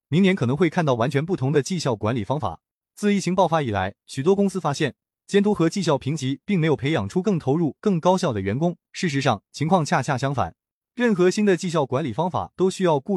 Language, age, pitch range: Chinese, 20-39, 130-185 Hz